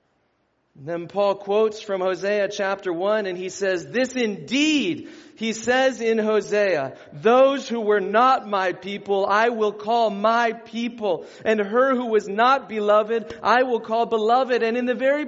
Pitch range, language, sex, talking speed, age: 225-285 Hz, English, male, 160 wpm, 40-59